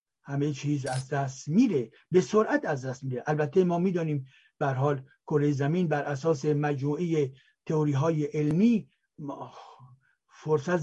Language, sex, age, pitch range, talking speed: Persian, male, 60-79, 150-210 Hz, 125 wpm